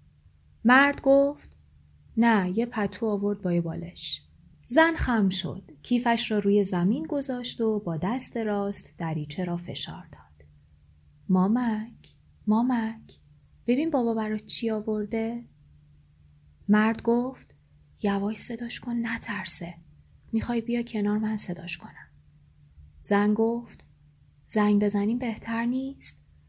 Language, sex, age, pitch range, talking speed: Persian, female, 20-39, 165-235 Hz, 115 wpm